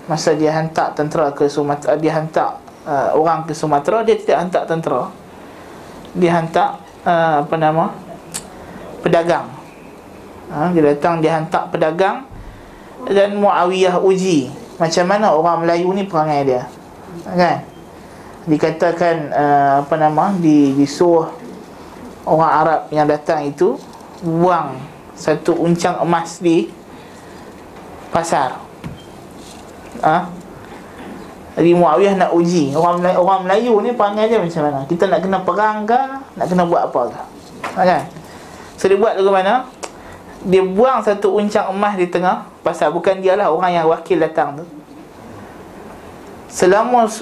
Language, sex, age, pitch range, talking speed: Malay, male, 20-39, 160-195 Hz, 130 wpm